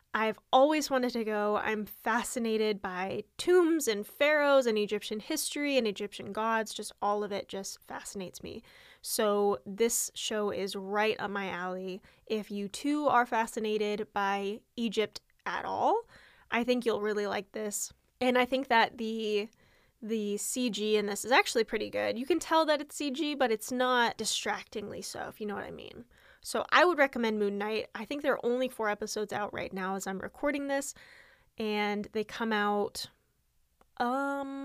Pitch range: 210-275 Hz